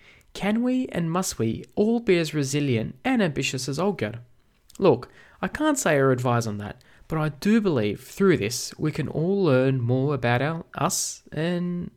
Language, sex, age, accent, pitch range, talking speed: English, male, 20-39, Australian, 120-175 Hz, 175 wpm